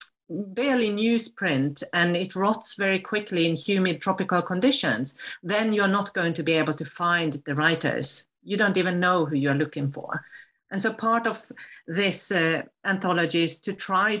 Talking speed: 170 wpm